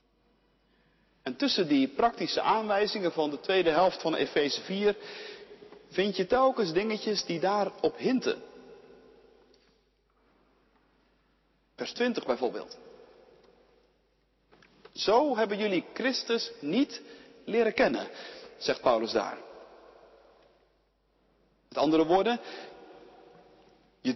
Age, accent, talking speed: 40-59, Dutch, 90 wpm